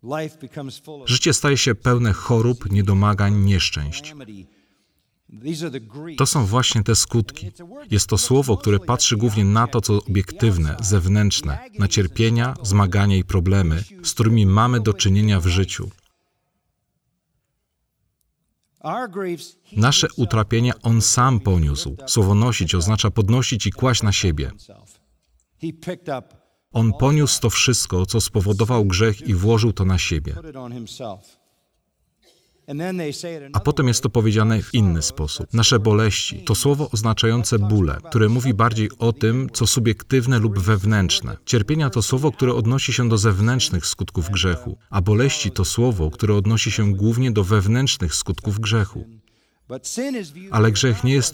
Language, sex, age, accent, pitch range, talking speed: Polish, male, 40-59, native, 100-125 Hz, 125 wpm